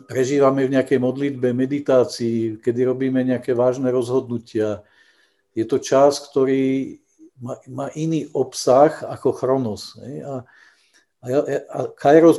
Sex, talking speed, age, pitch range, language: male, 100 wpm, 50-69, 115-130 Hz, Czech